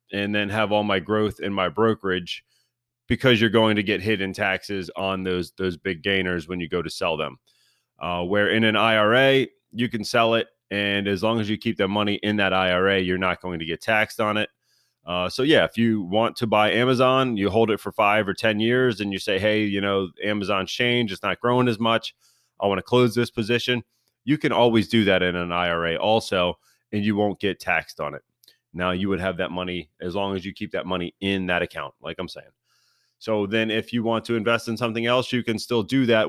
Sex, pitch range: male, 100-115 Hz